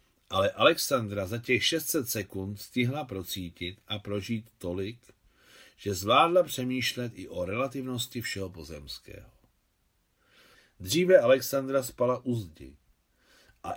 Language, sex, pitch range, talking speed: Czech, male, 95-125 Hz, 110 wpm